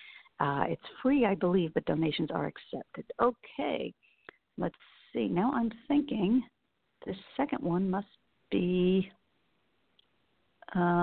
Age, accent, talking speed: 50-69, American, 115 wpm